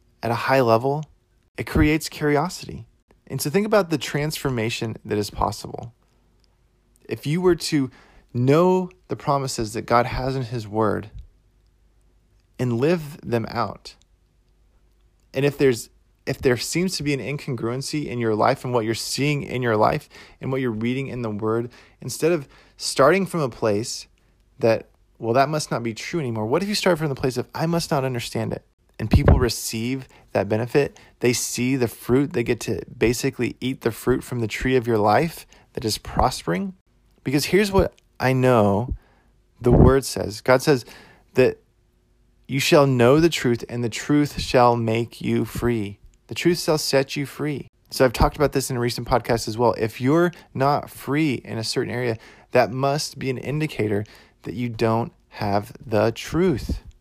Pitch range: 115-145 Hz